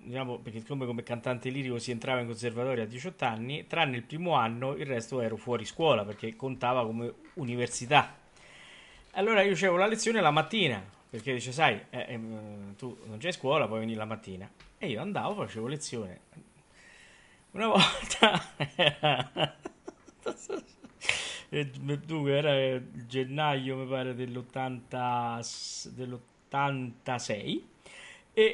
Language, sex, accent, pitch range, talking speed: Italian, male, native, 125-175 Hz, 125 wpm